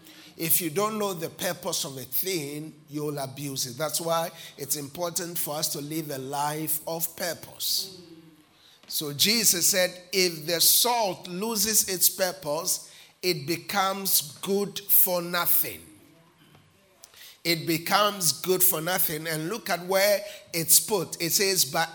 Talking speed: 140 wpm